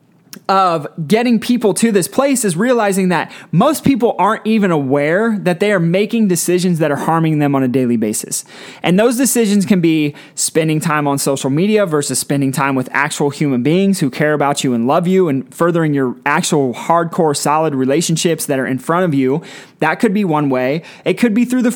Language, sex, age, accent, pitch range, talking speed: English, male, 20-39, American, 155-210 Hz, 205 wpm